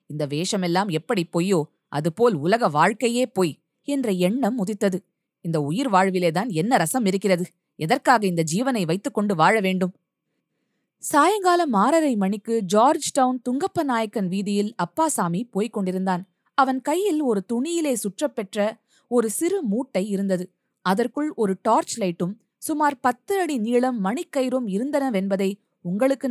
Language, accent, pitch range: Tamil, native, 190-270 Hz